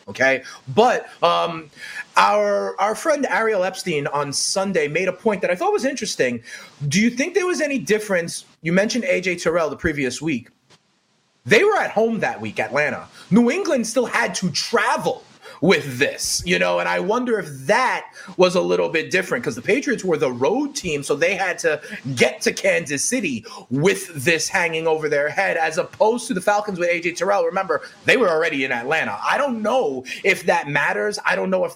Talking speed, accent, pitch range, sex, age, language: 195 wpm, American, 165-235 Hz, male, 30-49, English